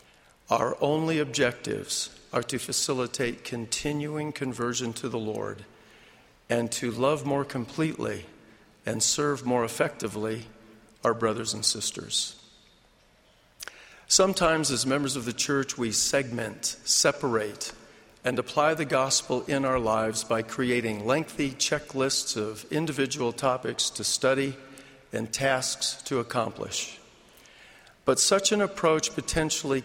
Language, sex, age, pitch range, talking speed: English, male, 50-69, 115-150 Hz, 115 wpm